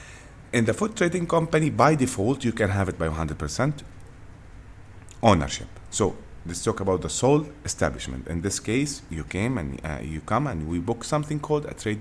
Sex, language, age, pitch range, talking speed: male, Arabic, 30-49, 85-120 Hz, 185 wpm